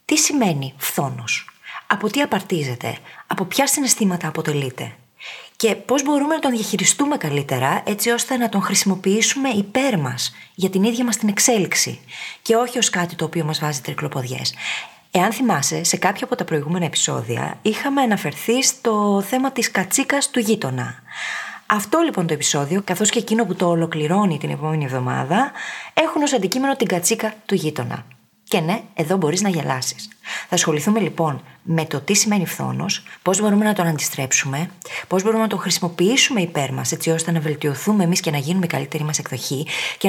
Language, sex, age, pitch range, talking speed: Greek, female, 20-39, 155-220 Hz, 170 wpm